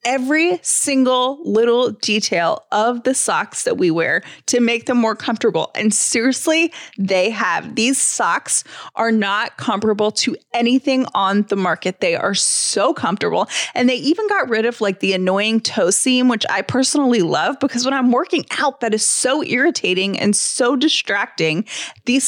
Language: English